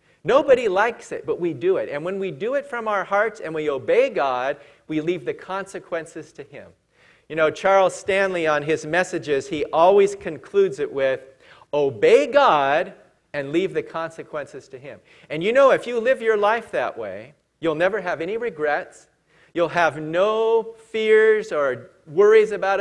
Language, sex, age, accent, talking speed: English, male, 40-59, American, 175 wpm